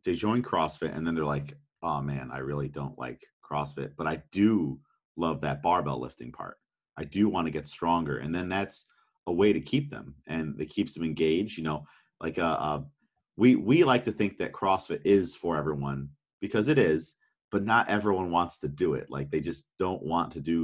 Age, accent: 40-59, American